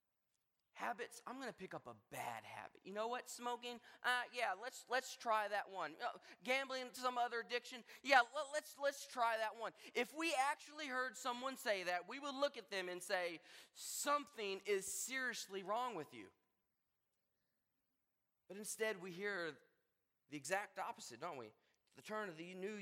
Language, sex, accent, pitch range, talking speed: English, male, American, 145-235 Hz, 175 wpm